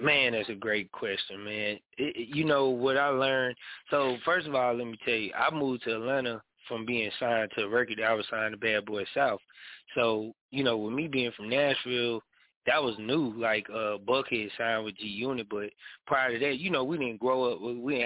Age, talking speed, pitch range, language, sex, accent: 20-39, 225 wpm, 105-120 Hz, English, male, American